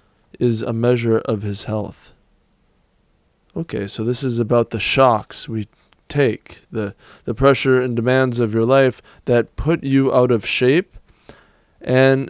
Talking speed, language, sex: 145 wpm, English, male